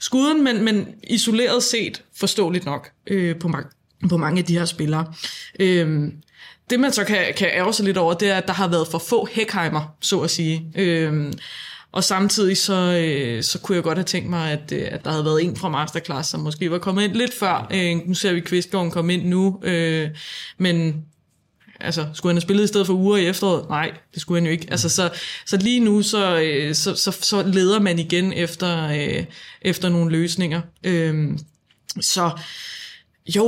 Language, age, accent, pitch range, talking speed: Danish, 20-39, native, 165-200 Hz, 200 wpm